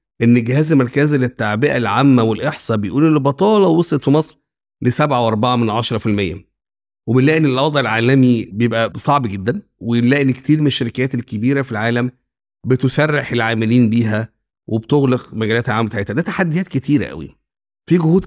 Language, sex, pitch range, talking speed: Arabic, male, 115-145 Hz, 135 wpm